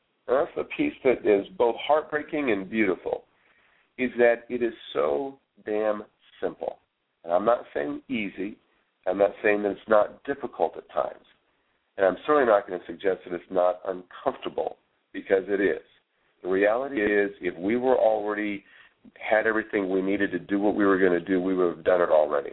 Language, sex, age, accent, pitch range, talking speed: English, male, 50-69, American, 90-120 Hz, 185 wpm